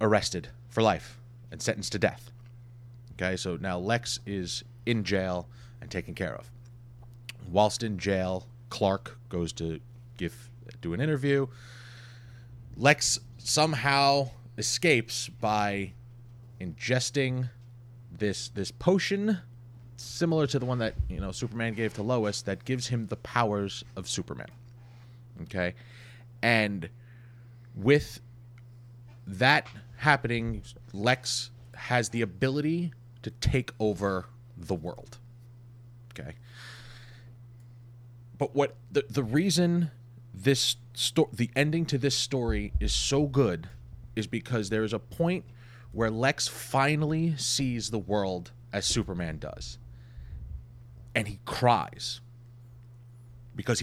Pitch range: 110-125 Hz